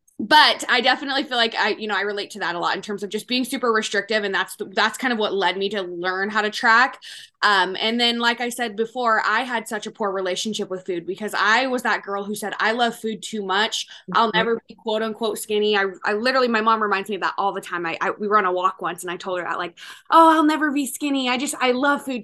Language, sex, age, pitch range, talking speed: English, female, 20-39, 195-230 Hz, 280 wpm